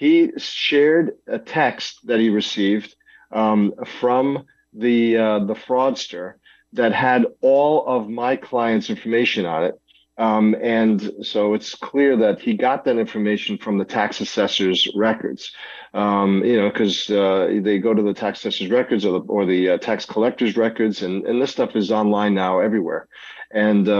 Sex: male